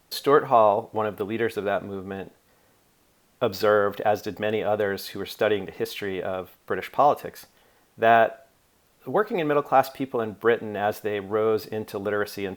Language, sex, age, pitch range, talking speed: English, male, 40-59, 95-115 Hz, 170 wpm